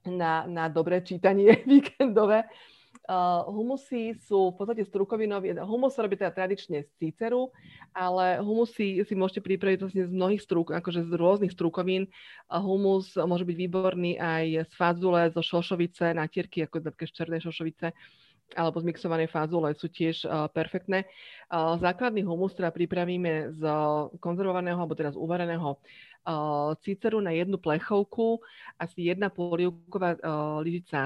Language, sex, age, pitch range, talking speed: Slovak, female, 30-49, 160-185 Hz, 130 wpm